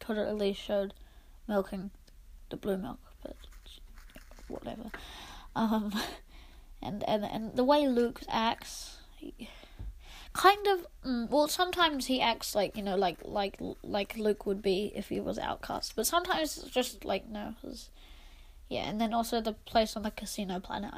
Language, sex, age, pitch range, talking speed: English, female, 20-39, 200-255 Hz, 160 wpm